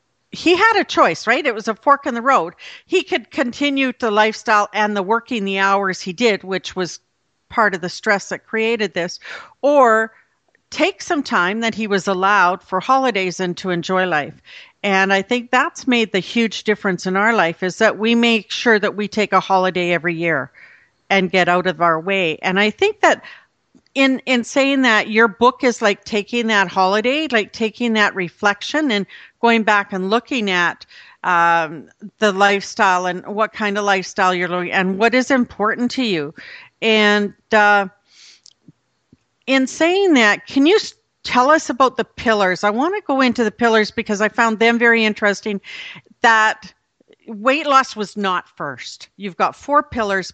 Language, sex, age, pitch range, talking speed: English, female, 50-69, 190-235 Hz, 180 wpm